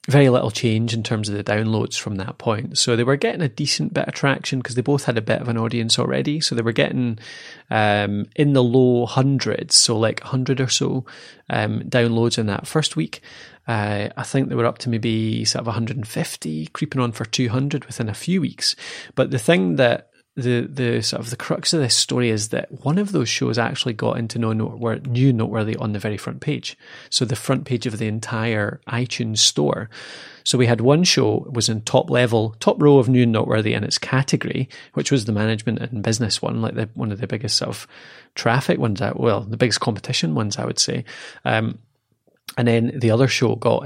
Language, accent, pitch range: English, British, 110-130 Hz